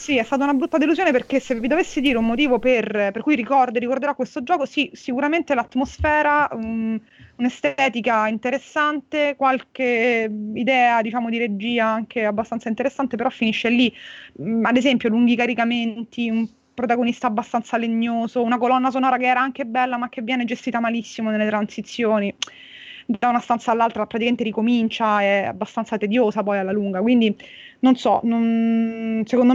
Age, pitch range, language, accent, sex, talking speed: 20-39, 215-255 Hz, Italian, native, female, 150 wpm